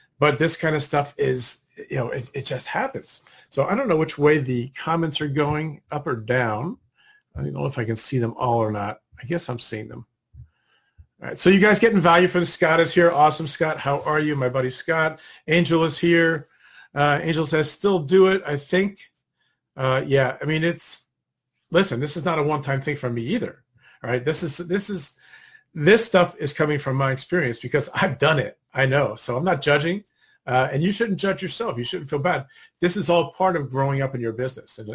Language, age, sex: English, 40-59, male